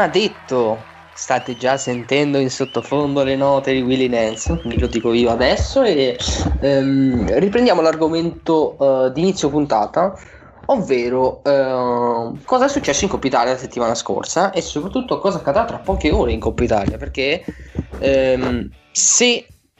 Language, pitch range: Italian, 120-145 Hz